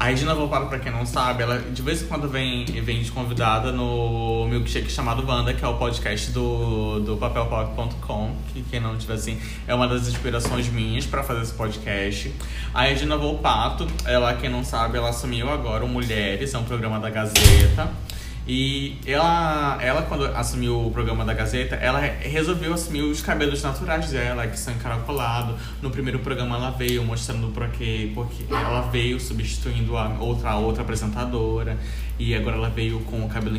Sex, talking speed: male, 180 wpm